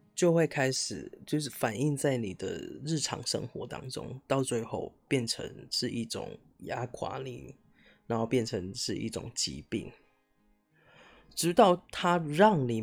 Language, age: Chinese, 20-39